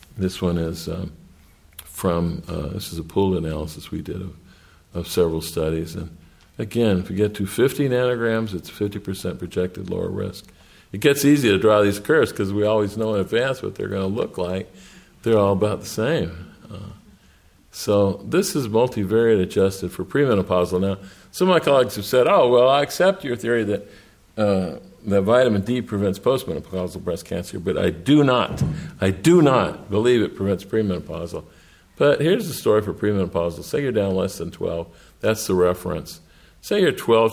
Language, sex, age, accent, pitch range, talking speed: English, male, 50-69, American, 90-110 Hz, 180 wpm